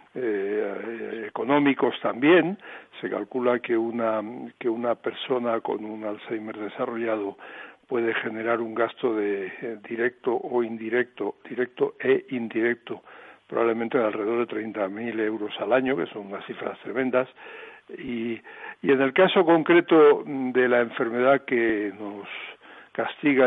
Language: Spanish